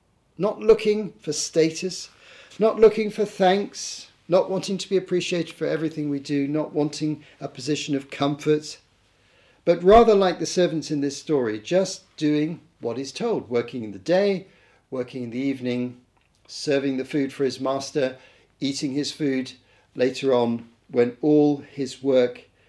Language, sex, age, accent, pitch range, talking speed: English, male, 50-69, British, 120-160 Hz, 155 wpm